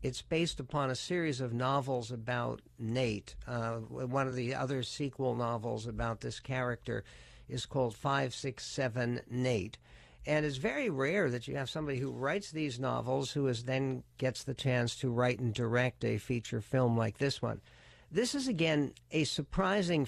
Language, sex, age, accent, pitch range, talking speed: English, male, 60-79, American, 120-145 Hz, 165 wpm